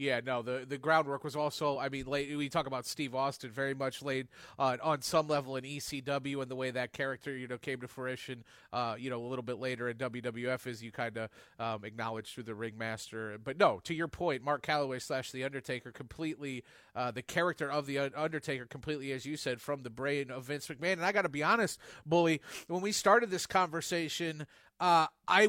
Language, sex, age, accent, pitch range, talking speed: English, male, 30-49, American, 135-195 Hz, 215 wpm